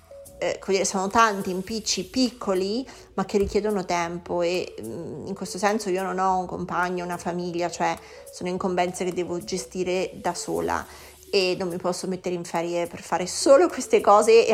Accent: native